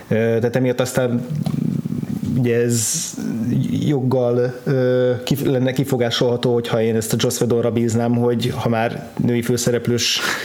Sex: male